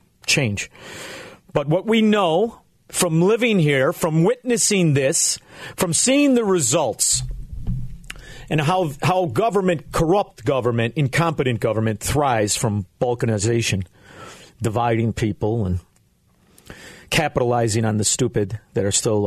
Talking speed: 110 wpm